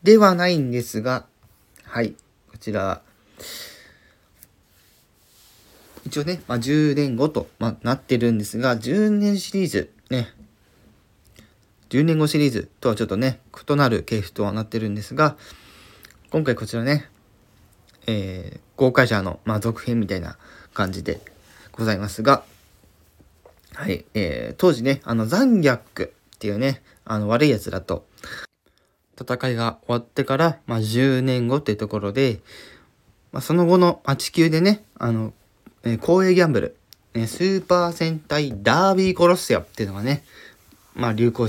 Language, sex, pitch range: Japanese, male, 110-145 Hz